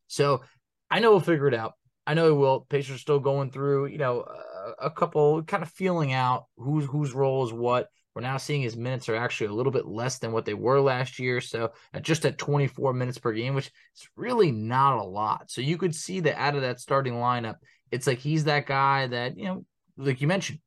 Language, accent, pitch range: English, American, 125-150 Hz